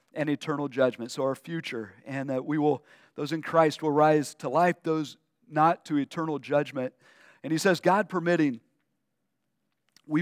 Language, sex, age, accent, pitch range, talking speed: English, male, 50-69, American, 145-175 Hz, 165 wpm